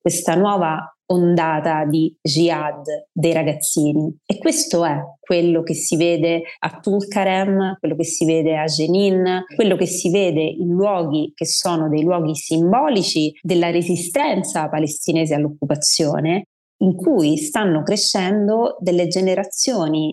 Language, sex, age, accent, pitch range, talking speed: Italian, female, 30-49, native, 155-185 Hz, 130 wpm